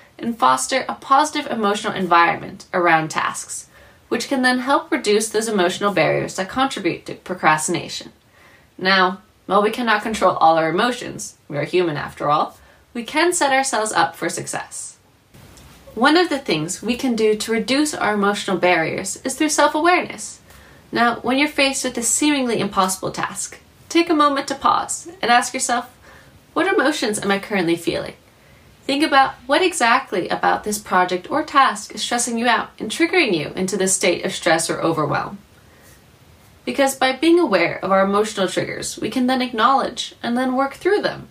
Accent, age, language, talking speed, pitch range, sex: American, 20-39, English, 170 wpm, 185-270 Hz, female